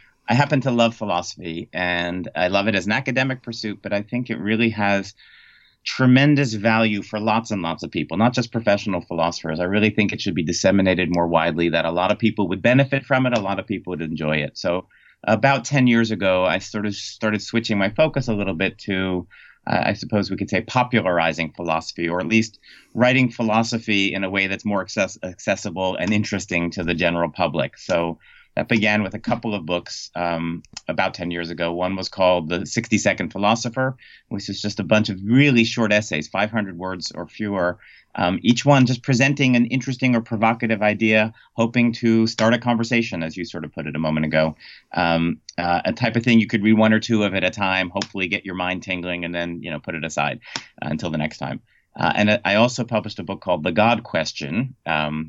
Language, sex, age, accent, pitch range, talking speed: English, male, 30-49, American, 90-115 Hz, 210 wpm